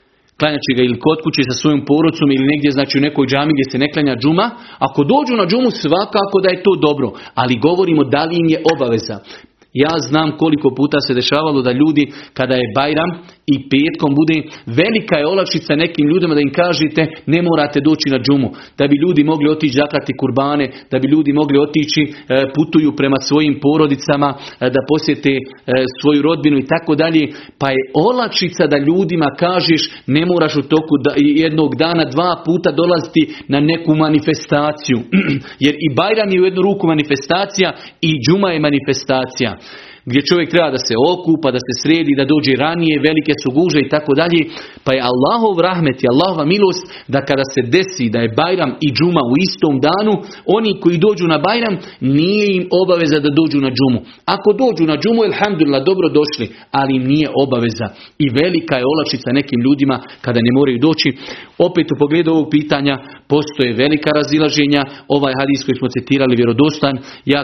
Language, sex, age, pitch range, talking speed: Croatian, male, 40-59, 135-160 Hz, 175 wpm